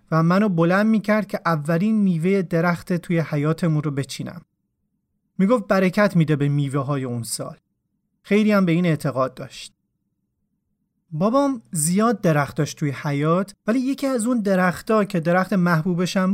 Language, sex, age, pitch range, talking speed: Persian, male, 30-49, 170-225 Hz, 145 wpm